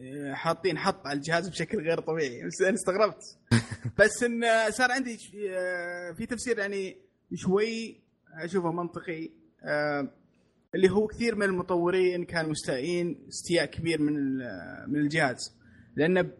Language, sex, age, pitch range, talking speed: Arabic, male, 20-39, 145-185 Hz, 115 wpm